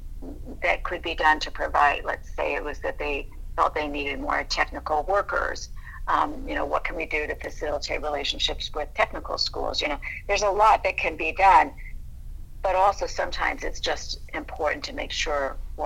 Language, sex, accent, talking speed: English, female, American, 190 wpm